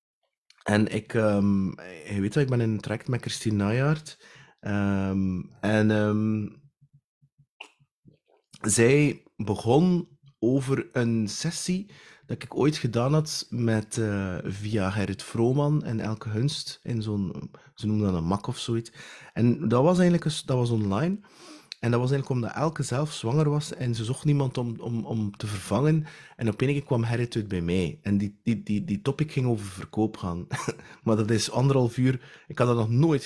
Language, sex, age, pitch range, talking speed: Dutch, male, 30-49, 110-145 Hz, 175 wpm